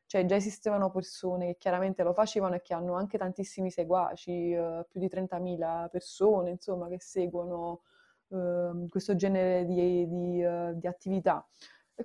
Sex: female